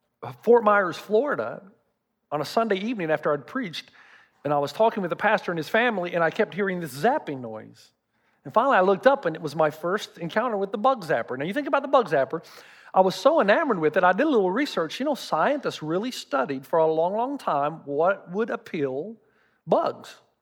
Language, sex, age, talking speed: English, male, 40-59, 215 wpm